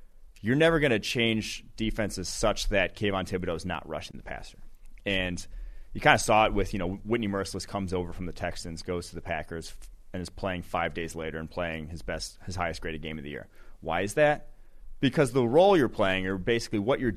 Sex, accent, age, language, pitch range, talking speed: male, American, 30-49, English, 90-115 Hz, 220 wpm